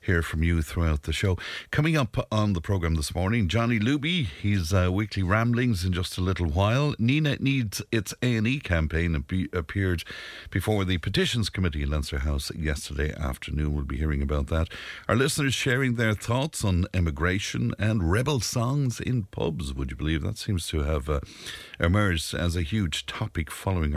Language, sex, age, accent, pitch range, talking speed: English, male, 60-79, Irish, 80-110 Hz, 175 wpm